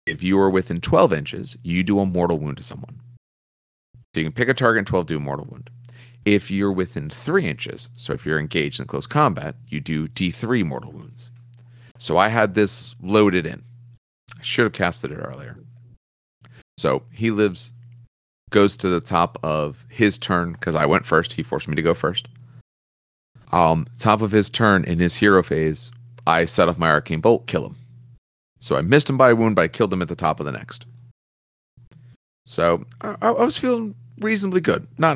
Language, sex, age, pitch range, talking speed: English, male, 40-59, 85-125 Hz, 200 wpm